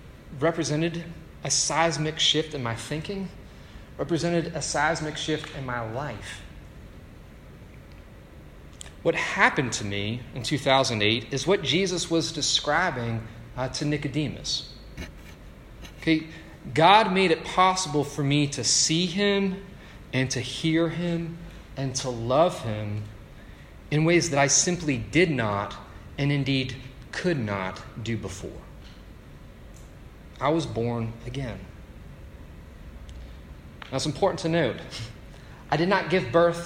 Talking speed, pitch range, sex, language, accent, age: 120 wpm, 110-165 Hz, male, English, American, 30-49